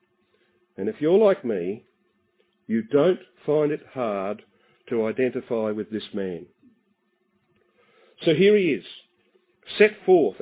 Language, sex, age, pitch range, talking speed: English, male, 50-69, 145-220 Hz, 120 wpm